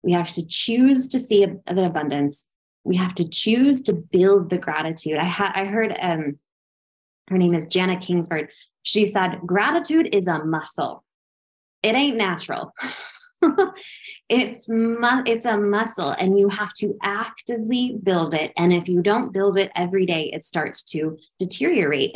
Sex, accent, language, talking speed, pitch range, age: female, American, English, 160 wpm, 165-215 Hz, 20-39